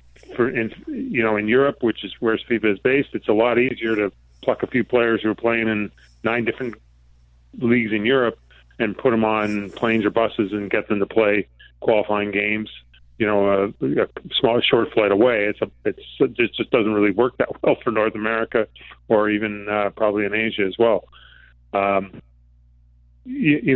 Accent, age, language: American, 30-49, English